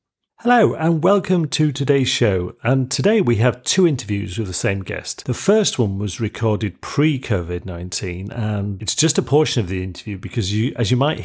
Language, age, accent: English, 40-59, British